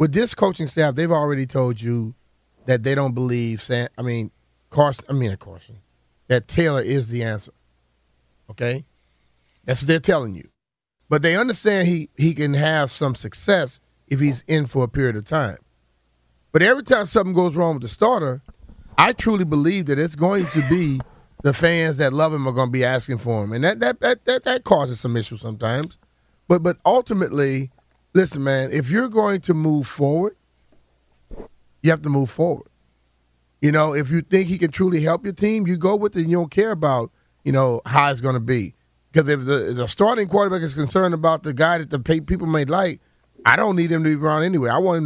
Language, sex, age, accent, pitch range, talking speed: English, male, 30-49, American, 120-175 Hz, 215 wpm